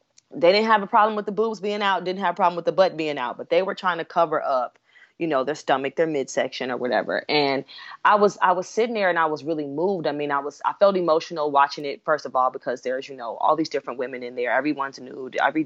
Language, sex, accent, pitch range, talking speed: English, female, American, 145-225 Hz, 270 wpm